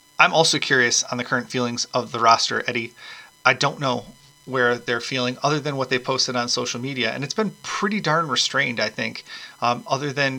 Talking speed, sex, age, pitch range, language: 210 wpm, male, 30-49, 125-140 Hz, English